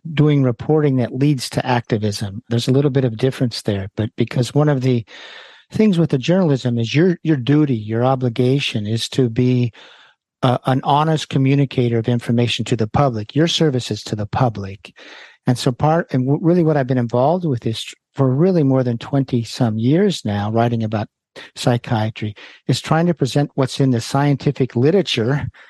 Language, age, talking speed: English, 50-69, 175 wpm